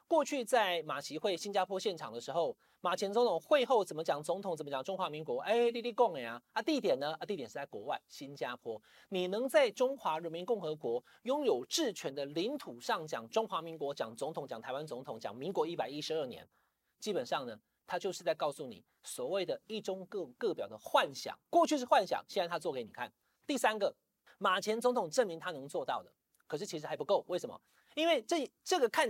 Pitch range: 180-260 Hz